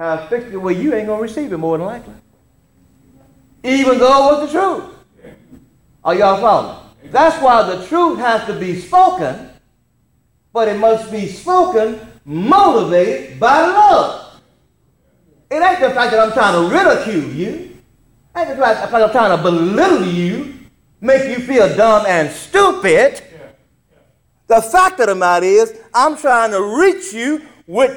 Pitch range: 220-360 Hz